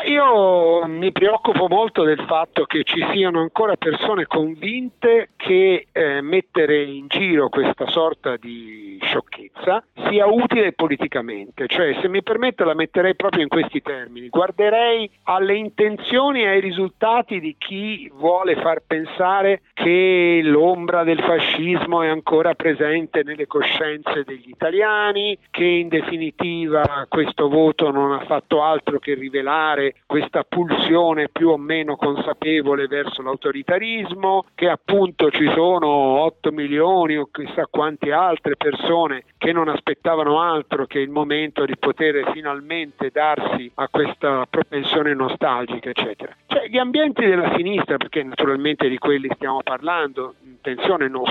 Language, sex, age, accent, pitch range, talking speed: Italian, male, 50-69, native, 145-195 Hz, 135 wpm